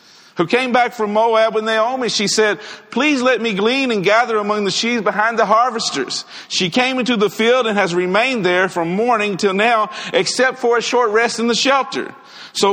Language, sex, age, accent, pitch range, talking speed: English, male, 50-69, American, 180-240 Hz, 205 wpm